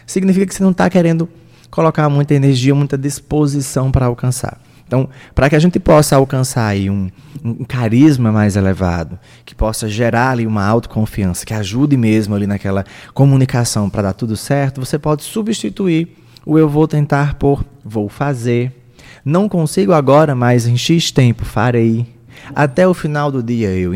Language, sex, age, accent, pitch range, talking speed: Portuguese, male, 20-39, Brazilian, 115-155 Hz, 165 wpm